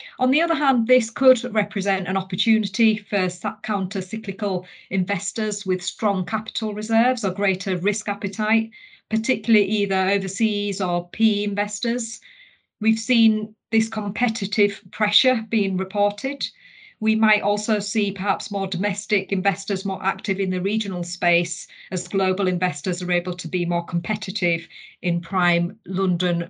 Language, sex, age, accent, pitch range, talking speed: English, female, 40-59, British, 180-215 Hz, 135 wpm